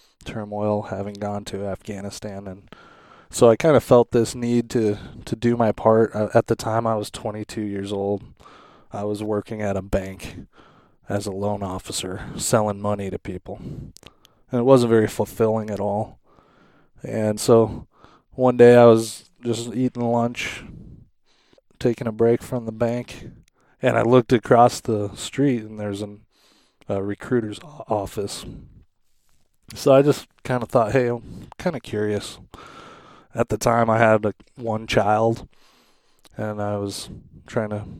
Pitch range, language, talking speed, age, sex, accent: 105-120 Hz, English, 155 wpm, 20-39, male, American